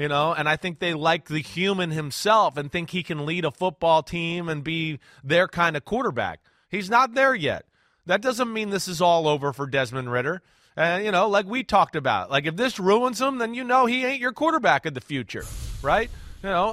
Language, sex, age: English, male, 30-49